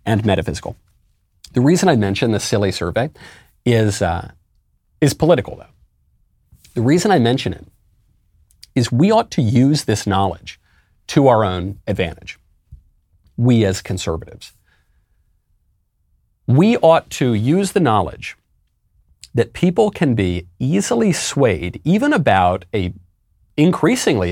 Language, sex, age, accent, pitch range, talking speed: English, male, 40-59, American, 90-120 Hz, 120 wpm